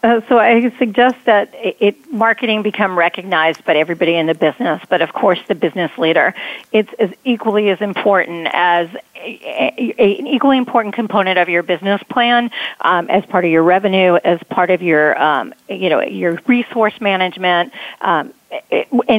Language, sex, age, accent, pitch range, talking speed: English, female, 40-59, American, 180-225 Hz, 170 wpm